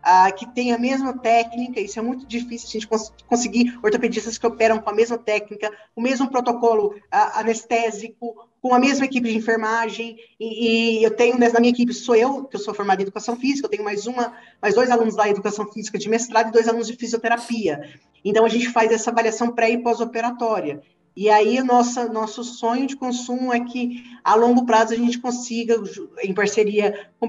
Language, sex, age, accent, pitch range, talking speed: Portuguese, female, 20-39, Brazilian, 220-245 Hz, 200 wpm